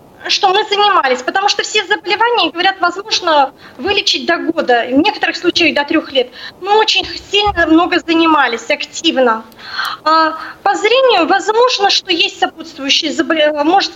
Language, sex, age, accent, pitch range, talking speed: Russian, female, 20-39, native, 300-385 Hz, 140 wpm